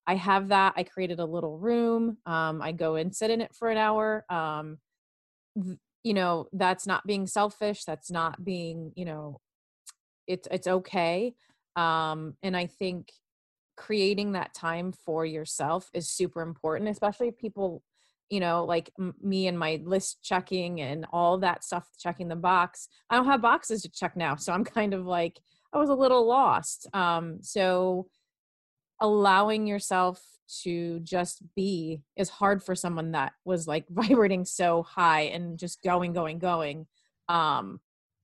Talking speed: 165 wpm